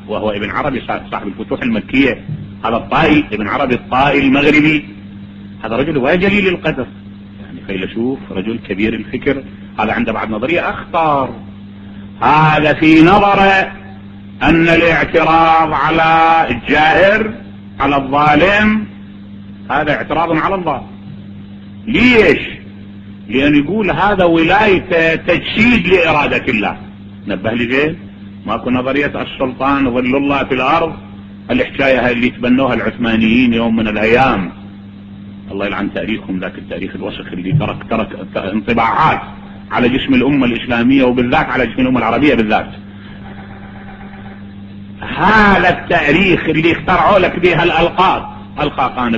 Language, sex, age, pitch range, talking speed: English, male, 40-59, 100-155 Hz, 115 wpm